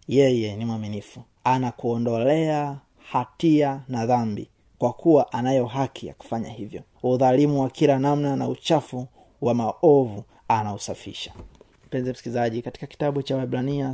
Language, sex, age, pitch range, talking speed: Swahili, male, 30-49, 120-135 Hz, 125 wpm